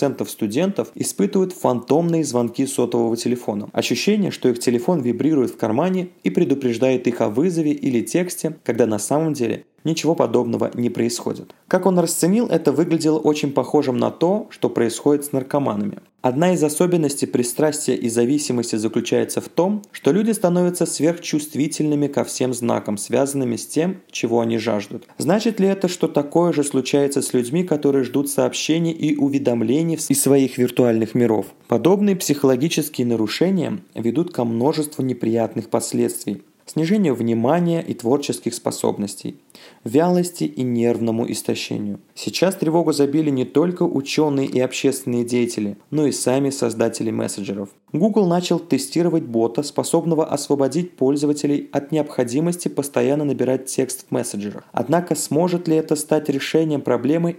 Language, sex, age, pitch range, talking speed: Russian, male, 20-39, 120-160 Hz, 140 wpm